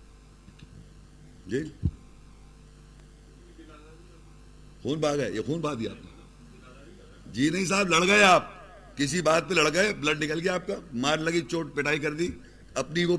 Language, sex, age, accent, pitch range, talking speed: English, male, 50-69, Indian, 150-200 Hz, 145 wpm